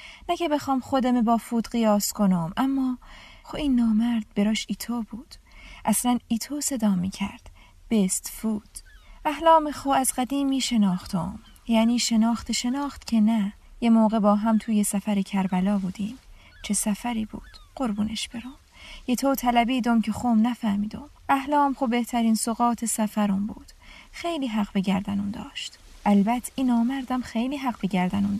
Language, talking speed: English, 150 wpm